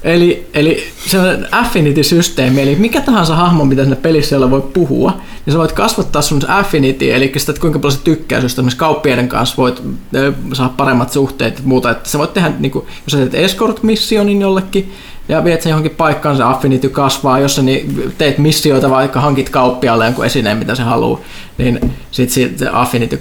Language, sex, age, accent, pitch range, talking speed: Finnish, male, 20-39, native, 130-160 Hz, 180 wpm